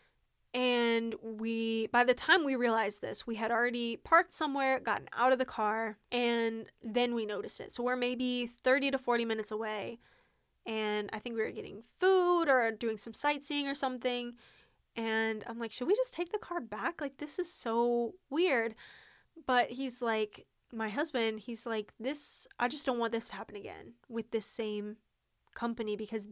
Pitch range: 220-250 Hz